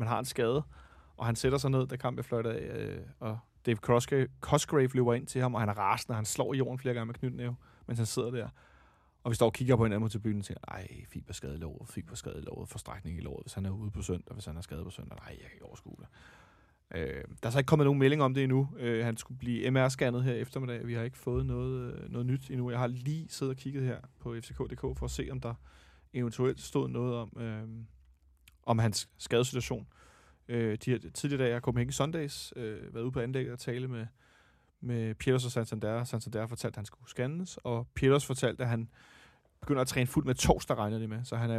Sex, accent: male, native